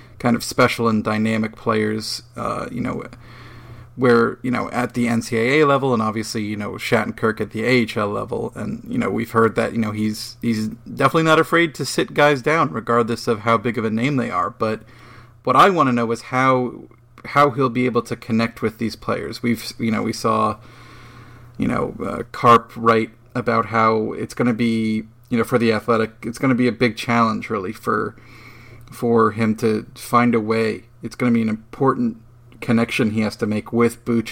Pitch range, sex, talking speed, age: 110-125 Hz, male, 205 wpm, 40-59